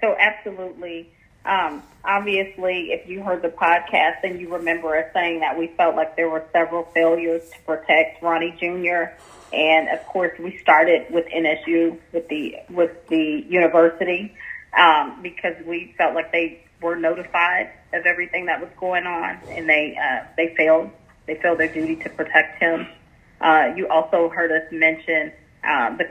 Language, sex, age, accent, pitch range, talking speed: English, female, 30-49, American, 160-170 Hz, 165 wpm